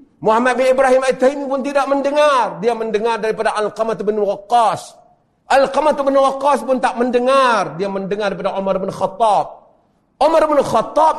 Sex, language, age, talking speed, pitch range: male, Malay, 50-69, 155 wpm, 230-300 Hz